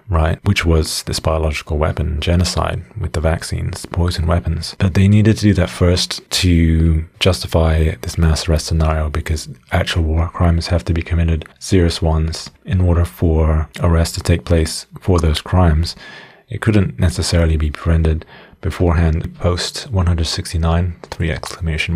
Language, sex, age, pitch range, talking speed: Swedish, male, 30-49, 80-95 Hz, 150 wpm